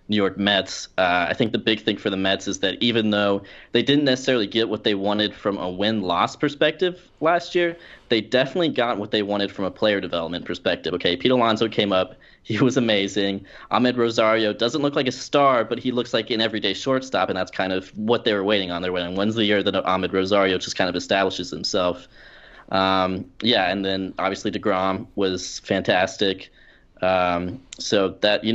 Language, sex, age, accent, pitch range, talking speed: English, male, 20-39, American, 95-115 Hz, 205 wpm